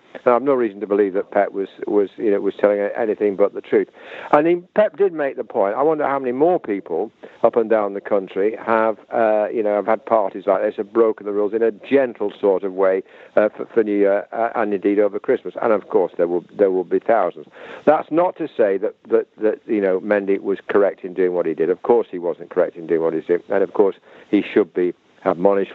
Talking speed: 255 wpm